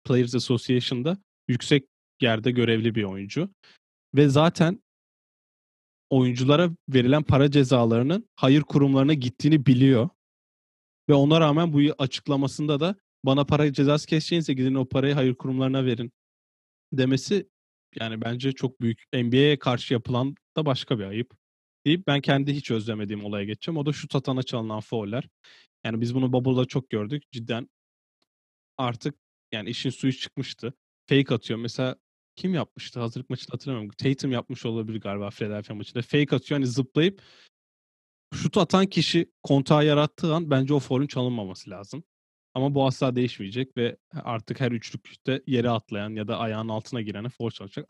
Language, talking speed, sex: Turkish, 145 wpm, male